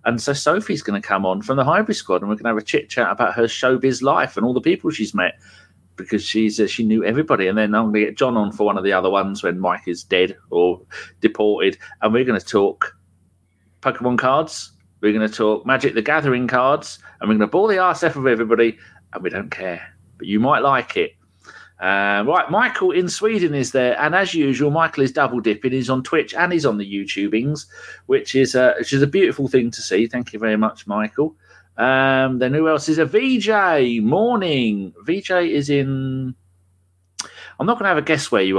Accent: British